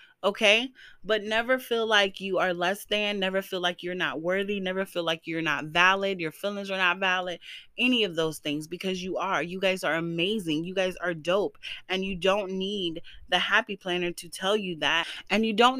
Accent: American